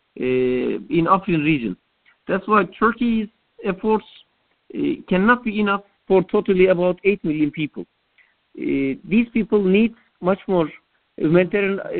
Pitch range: 175-215 Hz